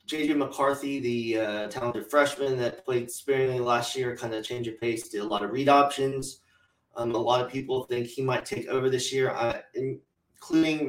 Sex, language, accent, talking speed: male, English, American, 200 wpm